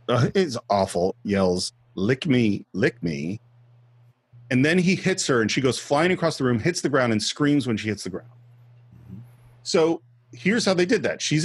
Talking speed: 195 wpm